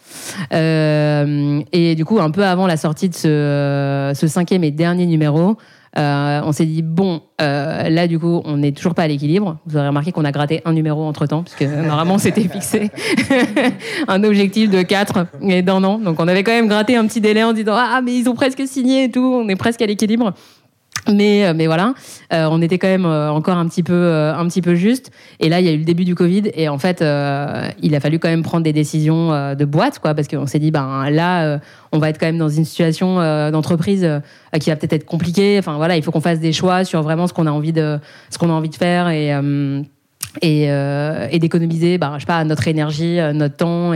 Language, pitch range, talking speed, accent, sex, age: French, 150-185 Hz, 235 wpm, French, female, 20-39